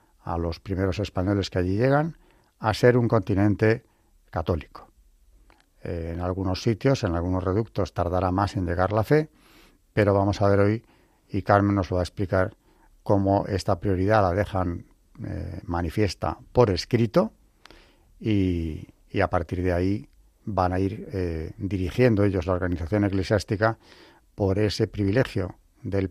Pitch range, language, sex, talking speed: 90-110 Hz, Spanish, male, 150 wpm